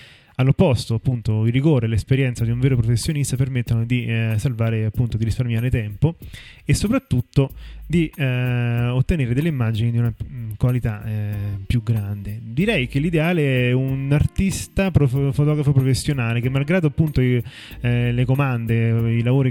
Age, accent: 20-39, native